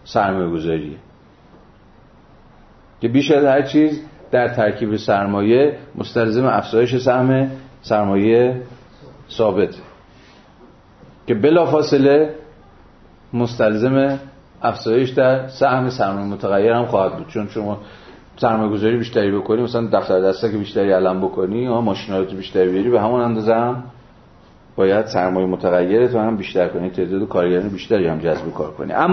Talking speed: 125 wpm